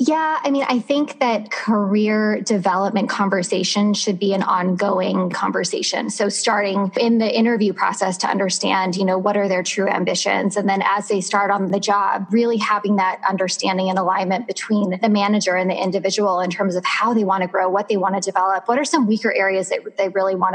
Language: English